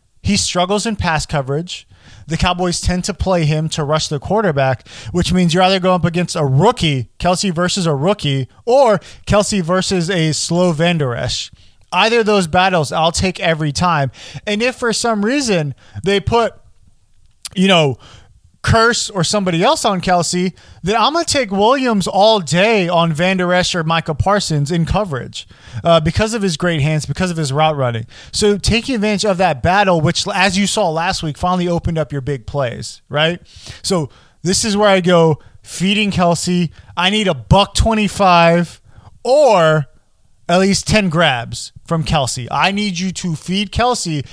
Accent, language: American, English